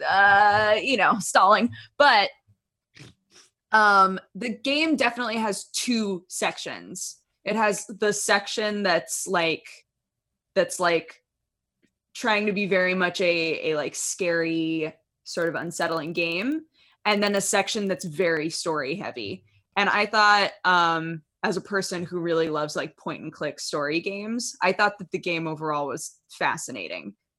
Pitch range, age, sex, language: 165-205 Hz, 20-39, female, English